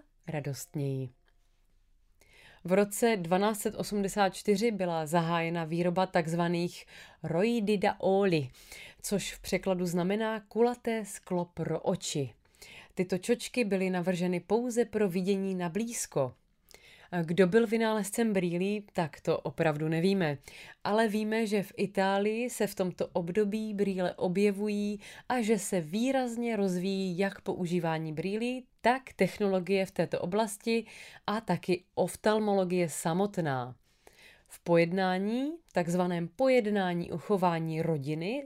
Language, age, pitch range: Czech, 30-49, 175-215 Hz